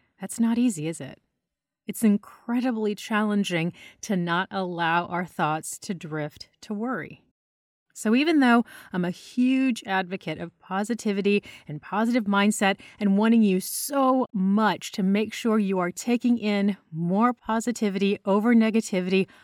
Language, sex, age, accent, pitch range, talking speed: English, female, 30-49, American, 180-235 Hz, 140 wpm